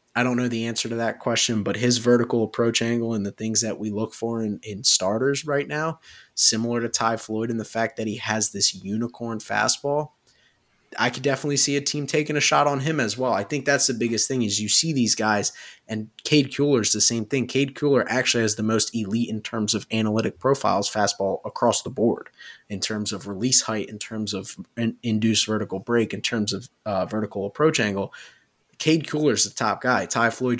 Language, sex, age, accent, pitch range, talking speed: English, male, 20-39, American, 105-125 Hz, 215 wpm